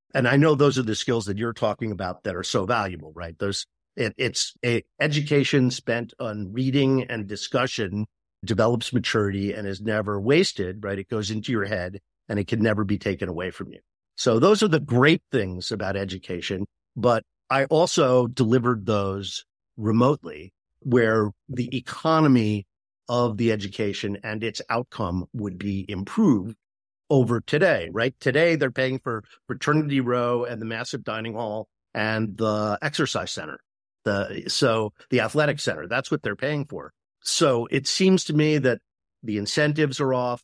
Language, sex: English, male